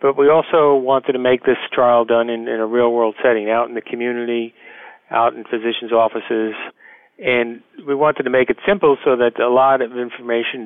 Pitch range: 110-130 Hz